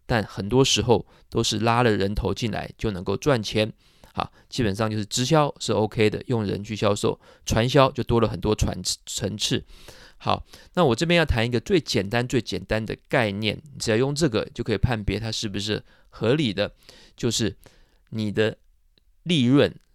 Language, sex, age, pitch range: Chinese, male, 20-39, 105-125 Hz